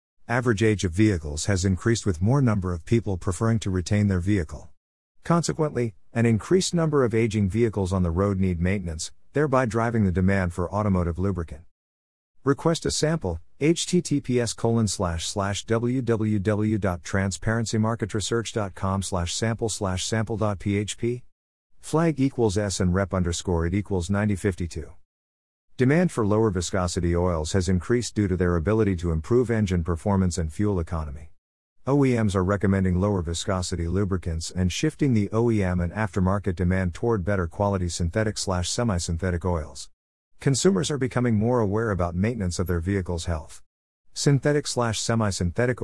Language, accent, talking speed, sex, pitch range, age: English, American, 135 wpm, male, 90-115 Hz, 50-69